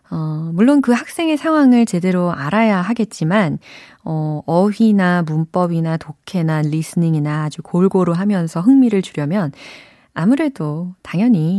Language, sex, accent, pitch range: Korean, female, native, 155-220 Hz